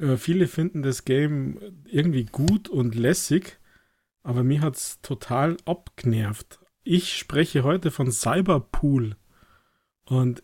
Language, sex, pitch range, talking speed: German, male, 135-165 Hz, 115 wpm